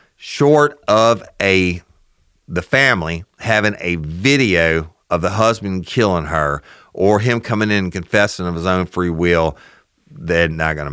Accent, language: American, English